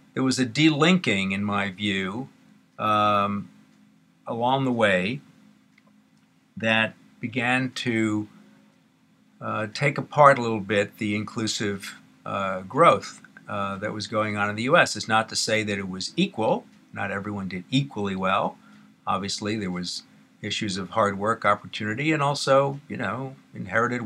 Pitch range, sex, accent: 100-120 Hz, male, American